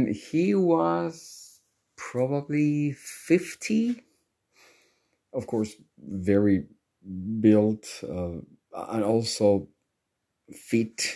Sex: male